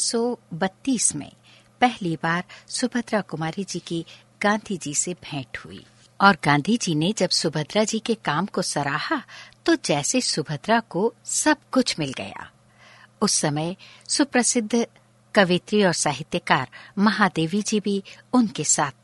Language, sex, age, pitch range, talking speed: Hindi, female, 60-79, 160-235 Hz, 140 wpm